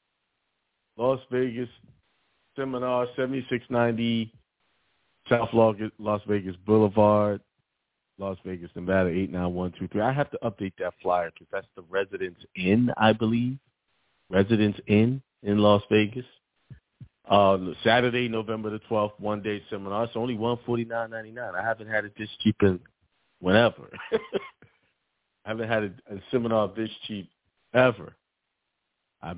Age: 40-59